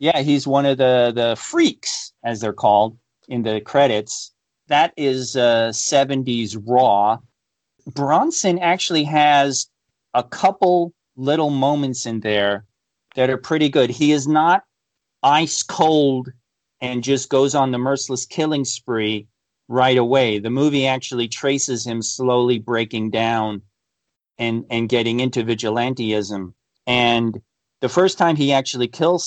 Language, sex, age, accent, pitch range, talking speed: English, male, 40-59, American, 115-140 Hz, 135 wpm